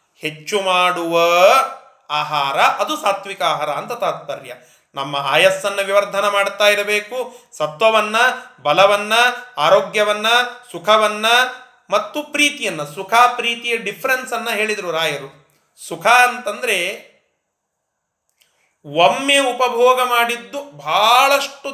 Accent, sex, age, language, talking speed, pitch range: native, male, 30-49, Kannada, 85 wpm, 180-250 Hz